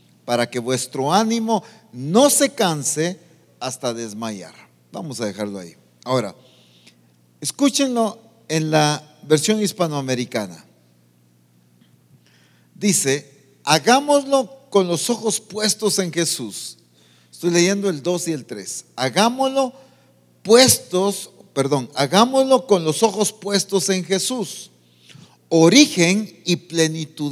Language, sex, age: English, male, 50-69